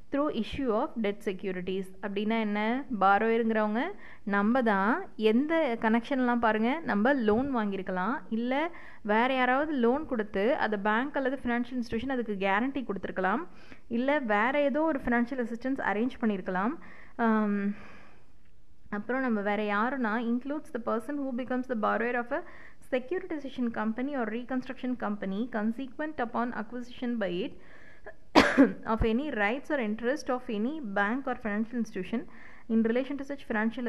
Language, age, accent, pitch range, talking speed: Tamil, 20-39, native, 210-260 Hz, 135 wpm